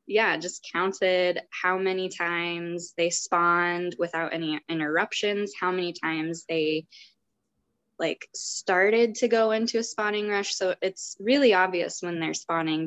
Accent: American